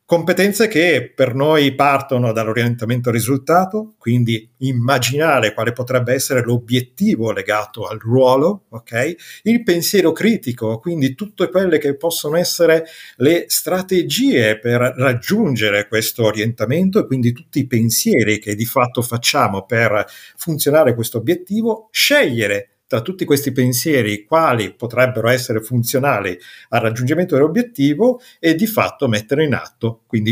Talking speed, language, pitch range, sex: 125 wpm, Italian, 115-160 Hz, male